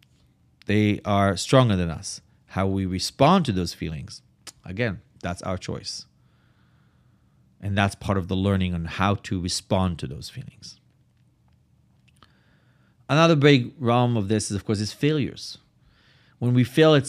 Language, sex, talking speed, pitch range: English, male, 150 wpm, 100-135 Hz